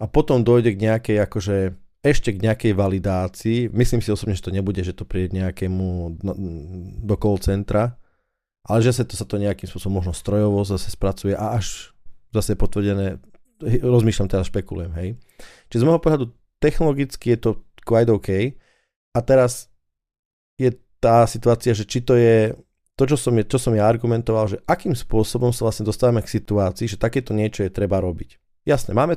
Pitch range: 95-120 Hz